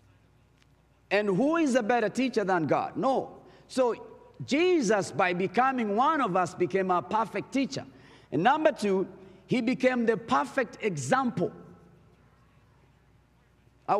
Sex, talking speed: male, 125 wpm